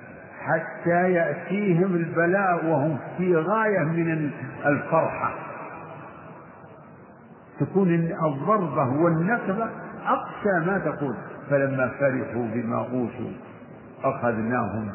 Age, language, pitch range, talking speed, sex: 50-69, Arabic, 130-180 Hz, 75 wpm, male